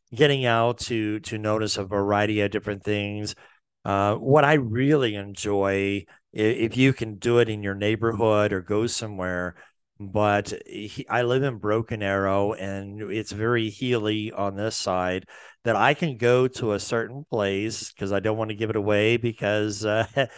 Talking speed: 175 wpm